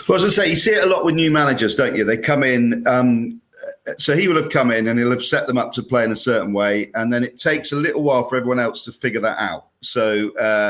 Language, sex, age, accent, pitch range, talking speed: English, male, 40-59, British, 105-135 Hz, 295 wpm